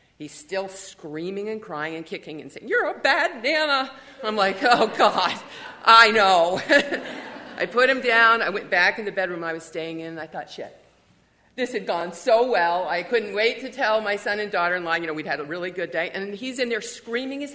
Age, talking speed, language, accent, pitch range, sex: 50-69, 220 wpm, English, American, 170-255 Hz, female